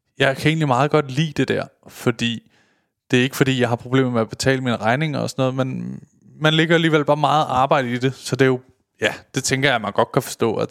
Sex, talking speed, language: male, 270 wpm, Danish